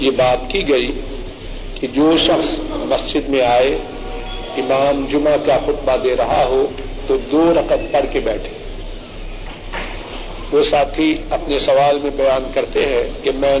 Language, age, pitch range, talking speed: Urdu, 50-69, 130-150 Hz, 145 wpm